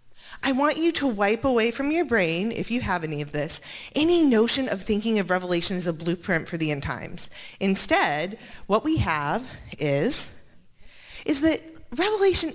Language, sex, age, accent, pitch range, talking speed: English, female, 30-49, American, 170-255 Hz, 170 wpm